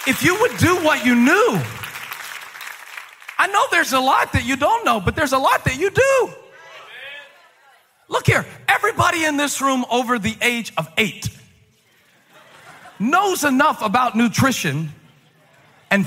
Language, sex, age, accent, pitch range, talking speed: English, male, 40-59, American, 225-335 Hz, 145 wpm